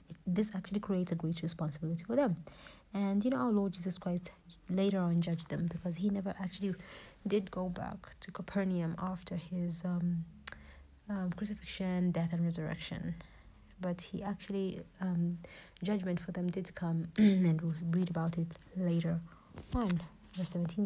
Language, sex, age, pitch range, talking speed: English, female, 30-49, 170-200 Hz, 155 wpm